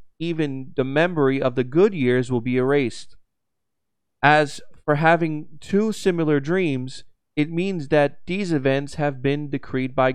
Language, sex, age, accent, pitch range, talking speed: English, male, 30-49, American, 115-150 Hz, 150 wpm